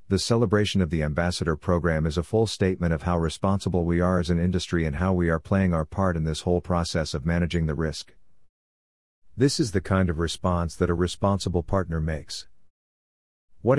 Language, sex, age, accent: English, male, 50-69, American